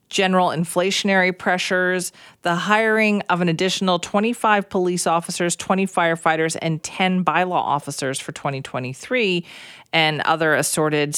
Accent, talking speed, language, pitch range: American, 120 wpm, English, 150-185 Hz